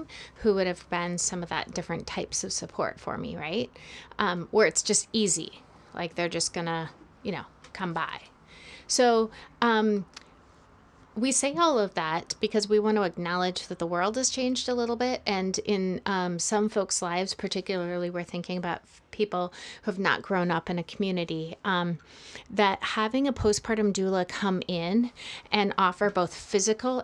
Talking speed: 175 wpm